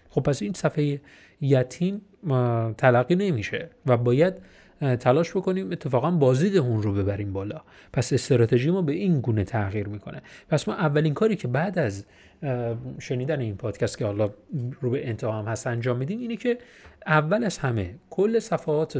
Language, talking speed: Persian, 160 wpm